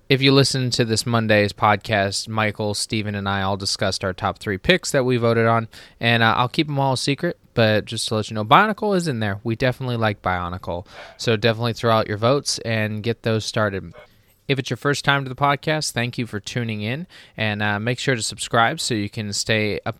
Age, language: 20-39, English